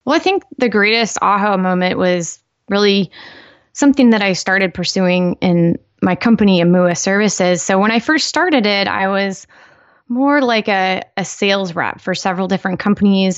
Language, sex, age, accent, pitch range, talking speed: English, female, 20-39, American, 185-235 Hz, 165 wpm